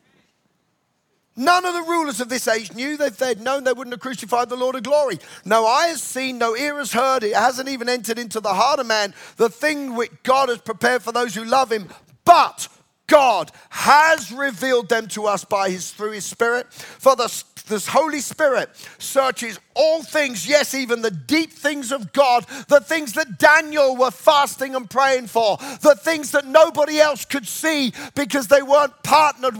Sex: male